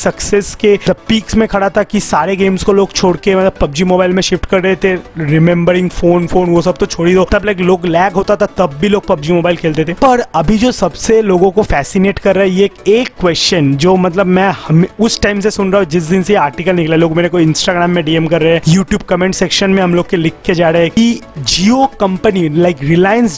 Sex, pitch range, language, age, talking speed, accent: male, 180-215 Hz, Hindi, 30-49, 245 wpm, native